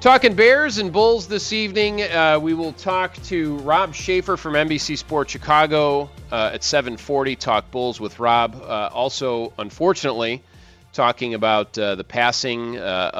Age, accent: 40-59, American